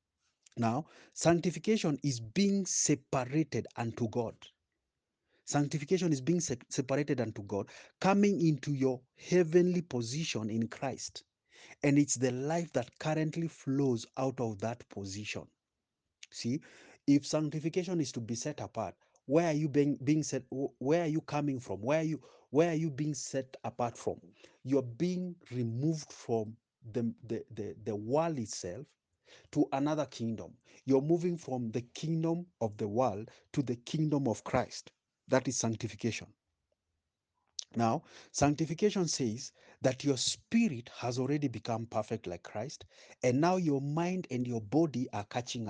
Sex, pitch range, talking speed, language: male, 115-155 Hz, 145 wpm, English